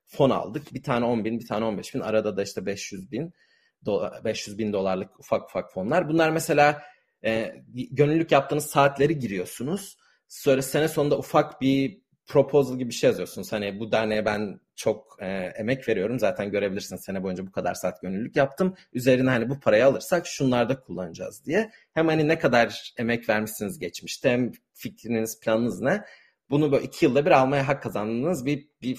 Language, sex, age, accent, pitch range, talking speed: Turkish, male, 40-59, native, 110-145 Hz, 180 wpm